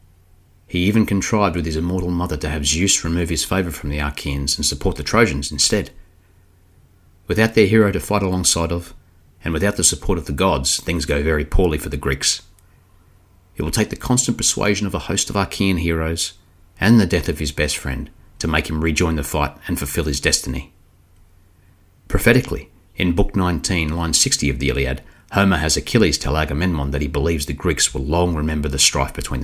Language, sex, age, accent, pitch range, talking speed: English, male, 30-49, Australian, 75-95 Hz, 195 wpm